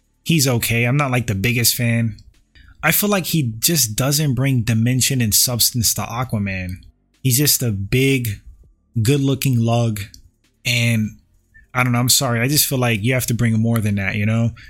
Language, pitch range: English, 110-140 Hz